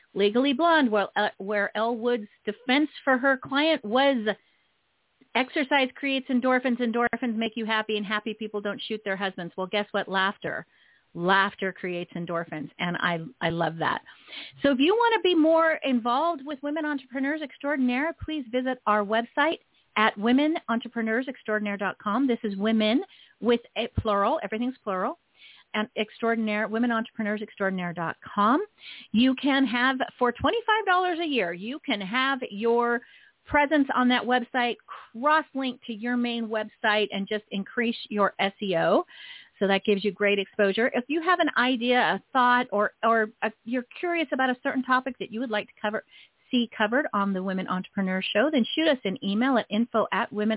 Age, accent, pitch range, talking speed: 40-59, American, 205-270 Hz, 155 wpm